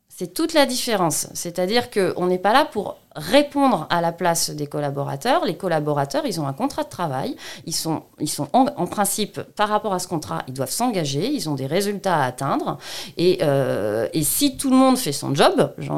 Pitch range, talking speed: 140-195 Hz, 210 wpm